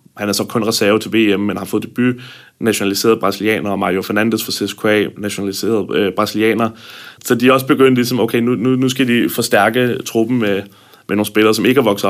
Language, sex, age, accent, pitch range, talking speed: Danish, male, 30-49, native, 105-125 Hz, 215 wpm